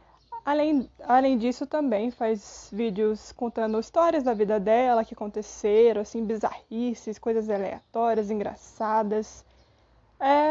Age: 20-39